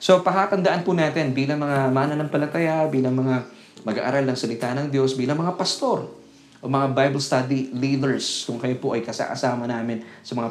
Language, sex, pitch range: Filipino, male, 115-140 Hz